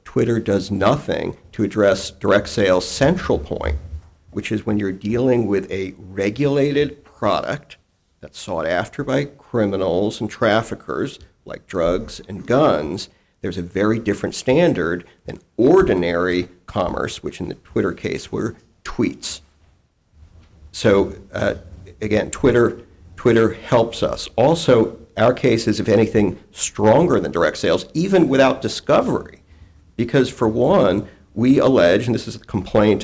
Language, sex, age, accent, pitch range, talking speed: English, male, 50-69, American, 95-135 Hz, 135 wpm